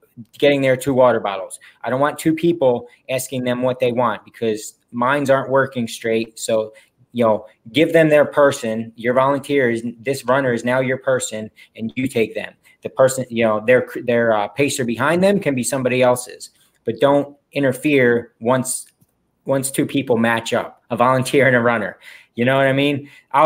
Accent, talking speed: American, 190 wpm